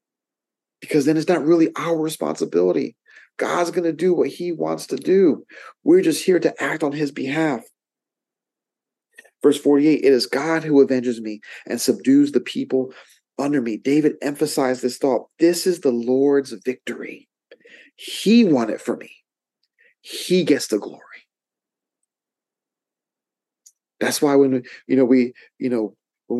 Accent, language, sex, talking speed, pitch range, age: American, English, male, 150 wpm, 125-165 Hz, 40-59